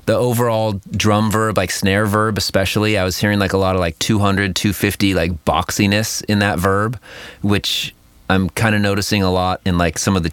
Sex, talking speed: male, 205 wpm